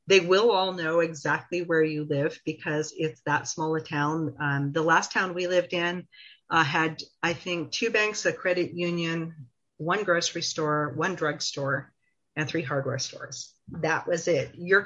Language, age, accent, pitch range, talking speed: English, 40-59, American, 155-190 Hz, 180 wpm